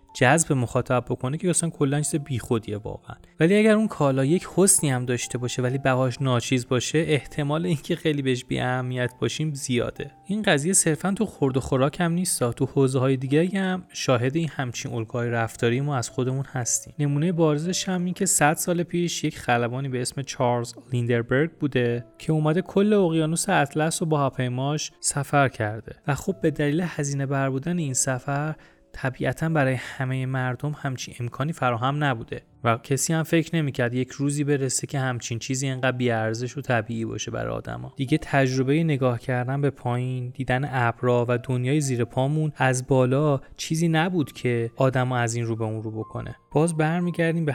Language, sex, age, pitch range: Persian, male, 30-49, 125-155 Hz